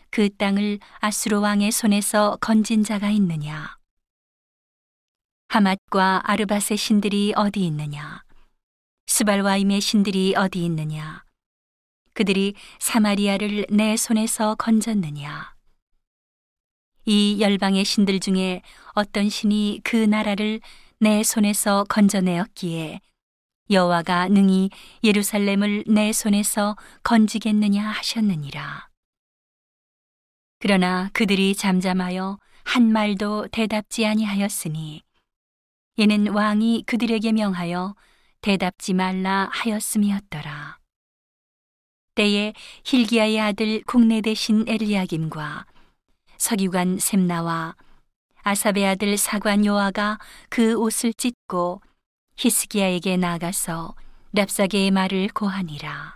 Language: Korean